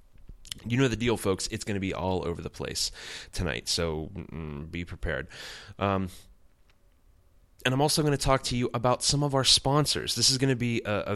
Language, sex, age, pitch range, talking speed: English, male, 20-39, 85-105 Hz, 205 wpm